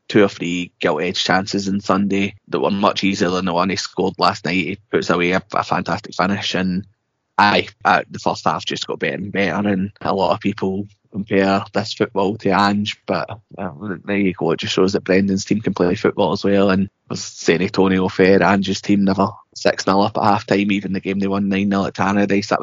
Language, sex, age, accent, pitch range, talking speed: English, male, 20-39, British, 95-105 Hz, 225 wpm